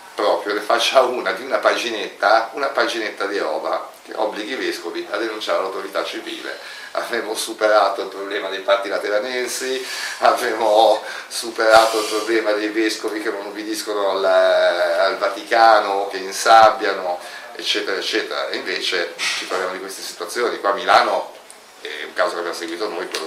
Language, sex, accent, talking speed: Italian, male, native, 155 wpm